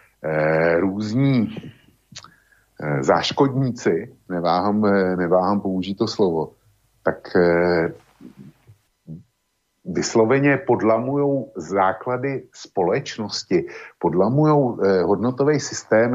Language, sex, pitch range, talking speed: Slovak, male, 95-125 Hz, 55 wpm